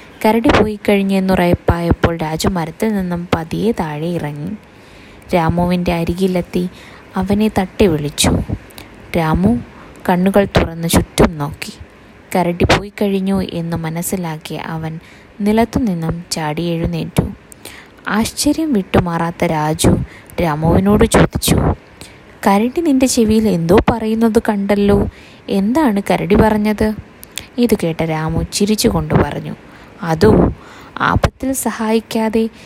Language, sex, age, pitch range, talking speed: Malayalam, female, 20-39, 165-215 Hz, 90 wpm